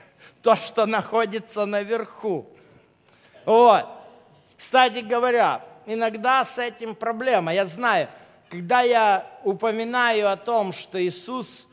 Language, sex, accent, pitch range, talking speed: Russian, male, native, 190-250 Hz, 95 wpm